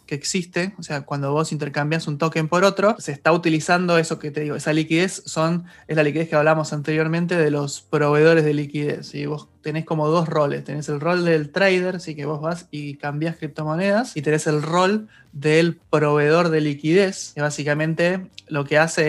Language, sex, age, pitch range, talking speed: Spanish, male, 20-39, 150-165 Hz, 205 wpm